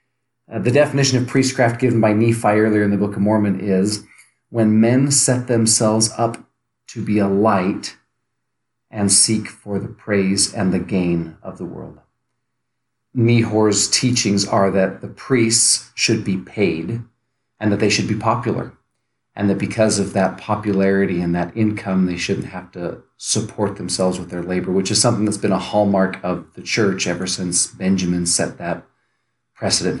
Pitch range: 95-115 Hz